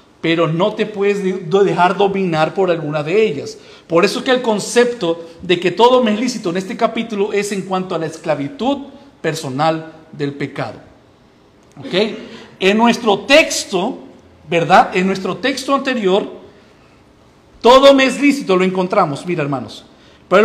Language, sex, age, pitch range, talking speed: Spanish, male, 50-69, 185-235 Hz, 150 wpm